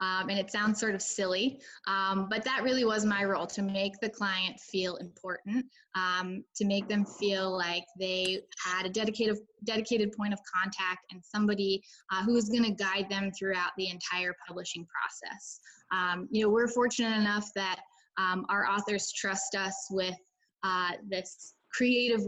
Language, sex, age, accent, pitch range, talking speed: English, female, 10-29, American, 190-220 Hz, 170 wpm